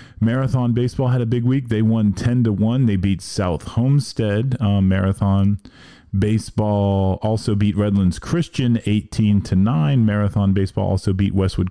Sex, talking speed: male, 155 wpm